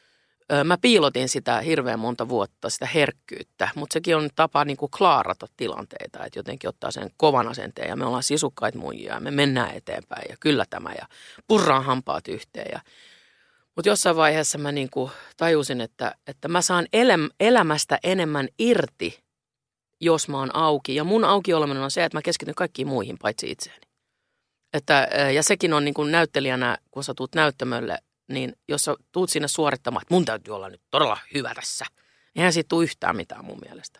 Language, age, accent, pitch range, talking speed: Finnish, 30-49, native, 135-180 Hz, 180 wpm